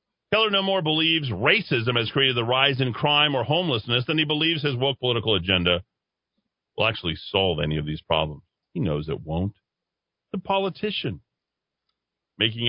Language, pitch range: English, 95-145 Hz